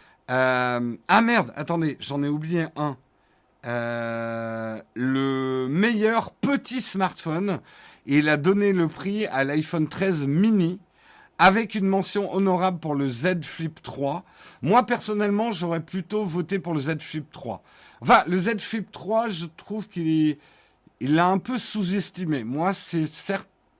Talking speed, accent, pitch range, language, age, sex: 145 wpm, French, 140-195 Hz, French, 50-69, male